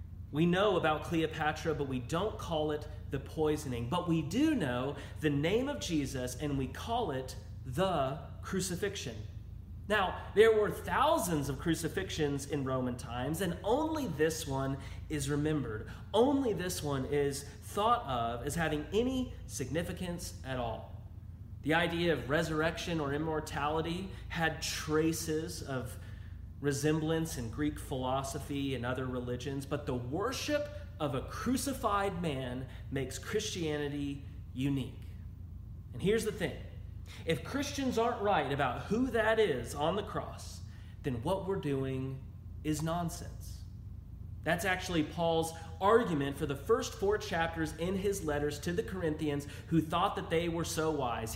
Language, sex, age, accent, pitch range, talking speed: English, male, 30-49, American, 105-165 Hz, 140 wpm